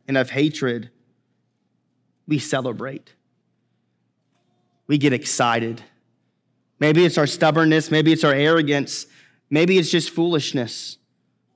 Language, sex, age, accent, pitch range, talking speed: English, male, 30-49, American, 140-175 Hz, 105 wpm